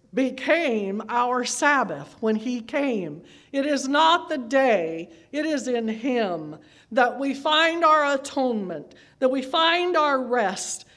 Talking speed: 135 wpm